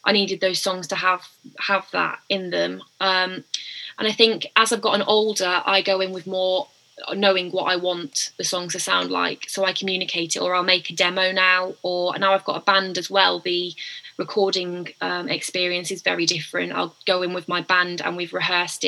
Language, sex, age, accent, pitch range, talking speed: English, female, 20-39, British, 180-200 Hz, 210 wpm